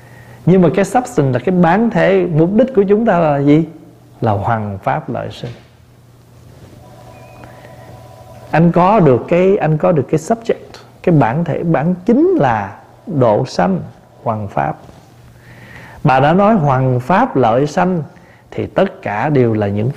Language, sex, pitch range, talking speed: Vietnamese, male, 120-160 Hz, 160 wpm